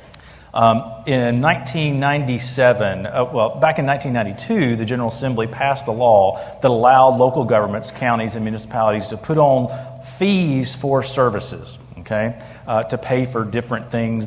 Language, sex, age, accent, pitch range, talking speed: English, male, 40-59, American, 110-140 Hz, 145 wpm